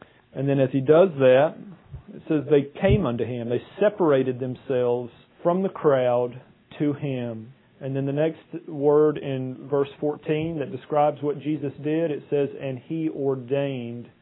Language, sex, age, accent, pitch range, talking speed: English, male, 40-59, American, 140-170 Hz, 160 wpm